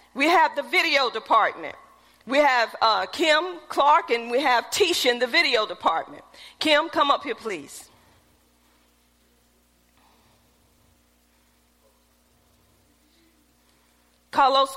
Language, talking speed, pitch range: English, 100 wpm, 230-325 Hz